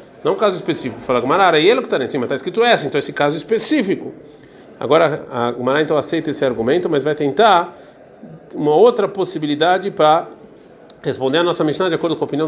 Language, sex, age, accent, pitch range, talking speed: Portuguese, male, 40-59, Brazilian, 140-195 Hz, 205 wpm